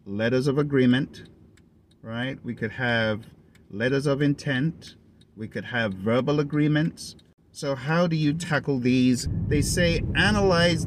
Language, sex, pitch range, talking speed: English, male, 105-140 Hz, 135 wpm